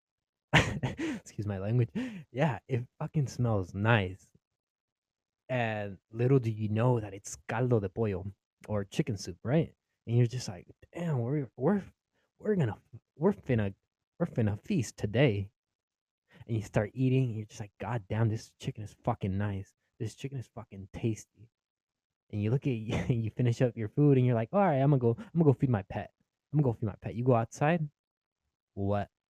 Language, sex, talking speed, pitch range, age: English, male, 185 wpm, 105-130 Hz, 20-39